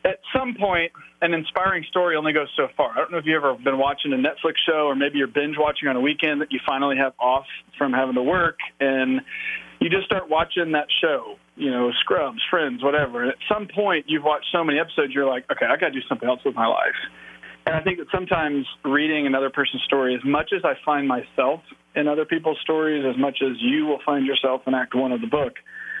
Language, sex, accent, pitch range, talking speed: English, male, American, 130-160 Hz, 235 wpm